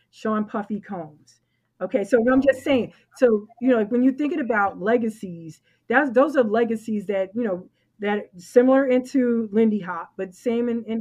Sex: female